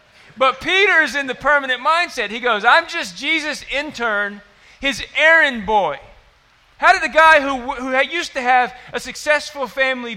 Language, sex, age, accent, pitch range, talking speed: English, male, 40-59, American, 215-275 Hz, 165 wpm